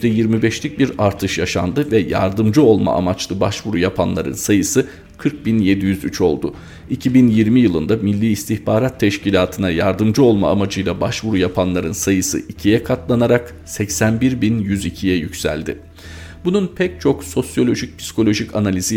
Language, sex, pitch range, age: Turkish, male, 95-120 Hz, 40-59